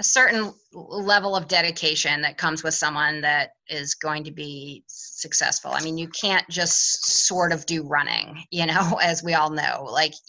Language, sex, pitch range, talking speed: English, female, 165-220 Hz, 180 wpm